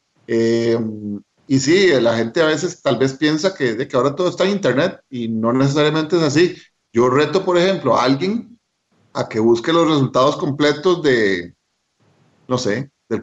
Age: 40-59